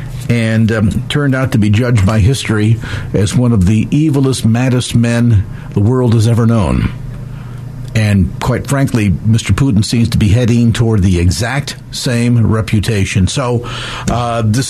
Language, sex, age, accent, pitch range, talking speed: English, male, 50-69, American, 115-140 Hz, 155 wpm